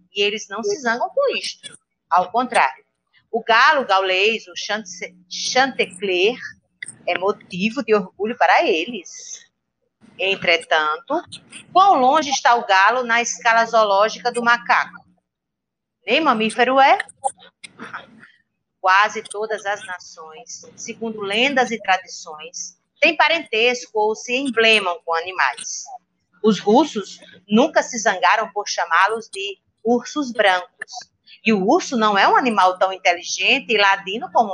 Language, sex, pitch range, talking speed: Portuguese, female, 195-260 Hz, 120 wpm